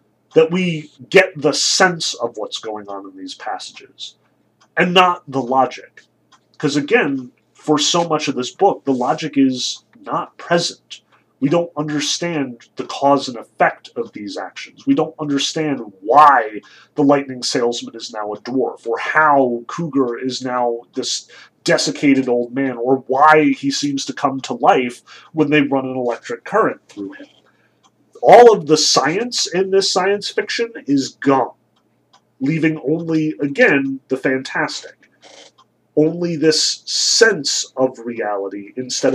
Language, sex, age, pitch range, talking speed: English, male, 30-49, 130-175 Hz, 145 wpm